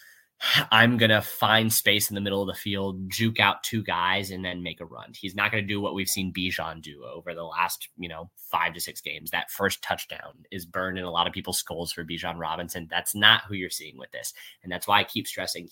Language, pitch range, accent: English, 90-110 Hz, American